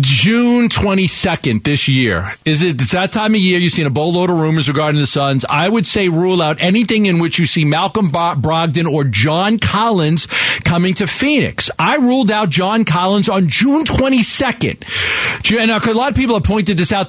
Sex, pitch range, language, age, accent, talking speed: male, 160-225 Hz, English, 40-59, American, 195 wpm